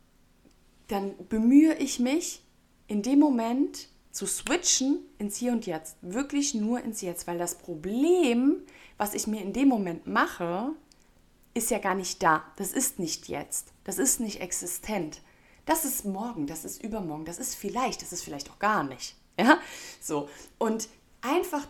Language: German